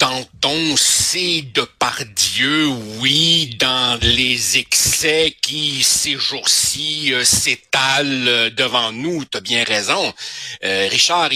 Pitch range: 125-170 Hz